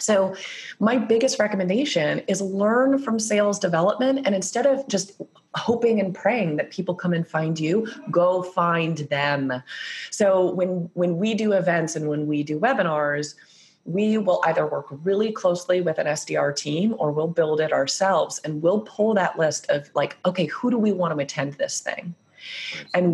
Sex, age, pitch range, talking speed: female, 30-49, 155-210 Hz, 175 wpm